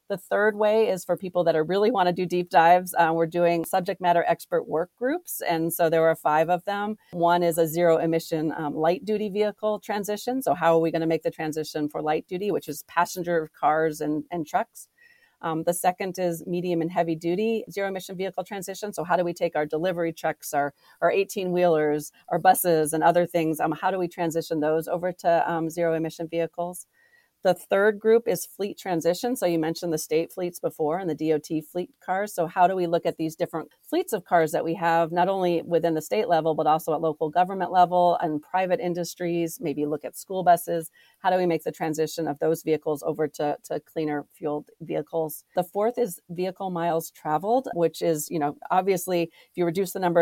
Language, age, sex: English, 40-59, female